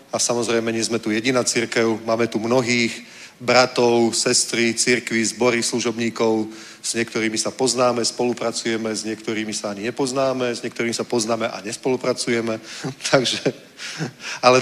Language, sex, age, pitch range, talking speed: Czech, male, 40-59, 115-130 Hz, 130 wpm